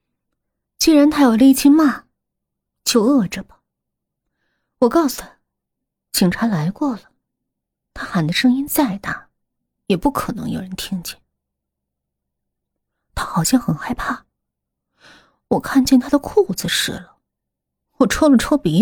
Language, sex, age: Chinese, female, 30-49